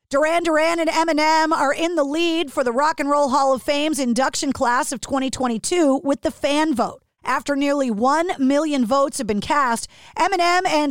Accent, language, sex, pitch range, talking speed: American, English, female, 240-310 Hz, 185 wpm